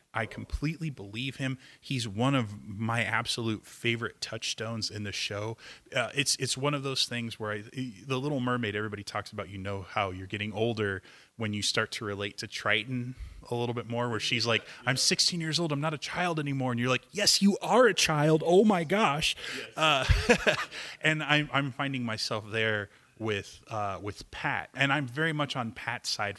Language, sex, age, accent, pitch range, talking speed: English, male, 20-39, American, 105-135 Hz, 200 wpm